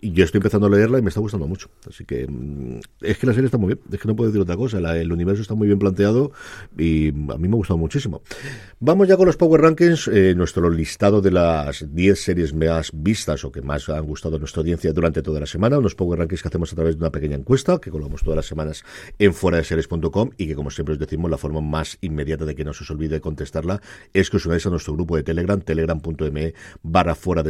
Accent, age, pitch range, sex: Spanish, 50-69, 80-105 Hz, male